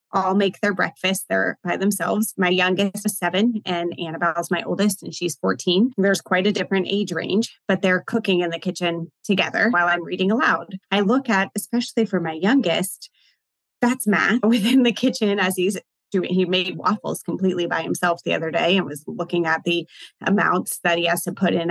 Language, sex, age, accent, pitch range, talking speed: English, female, 30-49, American, 175-215 Hz, 195 wpm